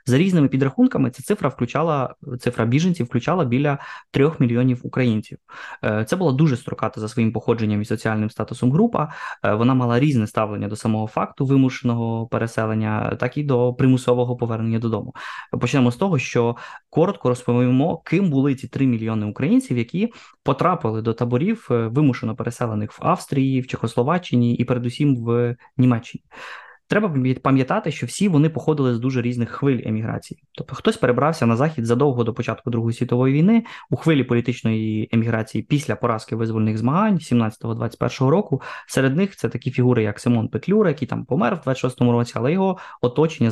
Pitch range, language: 115-145 Hz, Ukrainian